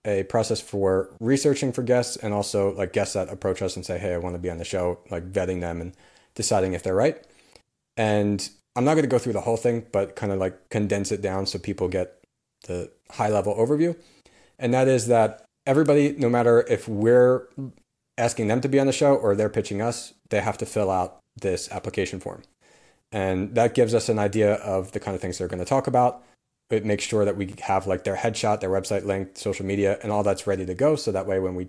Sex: male